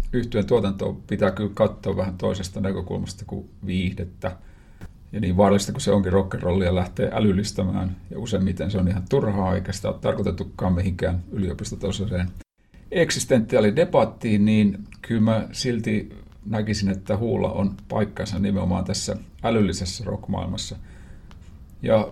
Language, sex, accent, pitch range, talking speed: Finnish, male, native, 95-105 Hz, 120 wpm